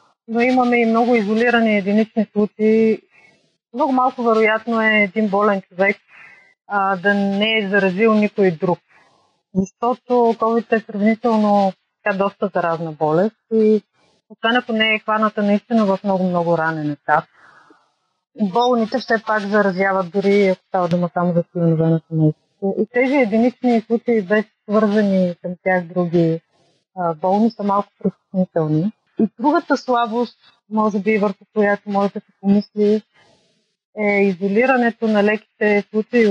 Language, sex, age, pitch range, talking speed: Bulgarian, female, 30-49, 195-225 Hz, 135 wpm